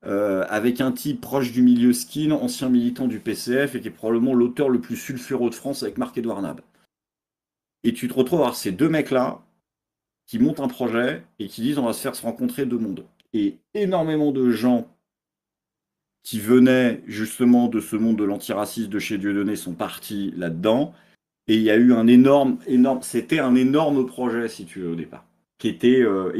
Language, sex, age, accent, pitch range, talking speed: French, male, 40-59, French, 100-130 Hz, 200 wpm